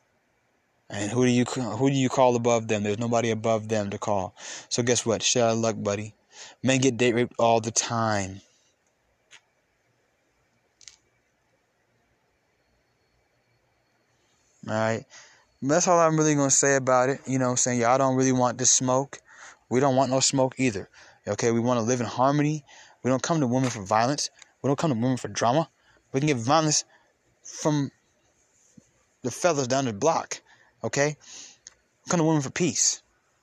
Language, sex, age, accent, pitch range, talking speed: English, male, 20-39, American, 115-140 Hz, 170 wpm